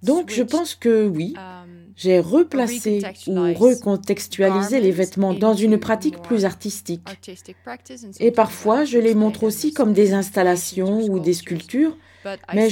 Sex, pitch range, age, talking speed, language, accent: female, 175-220 Hz, 40-59, 135 wpm, French, French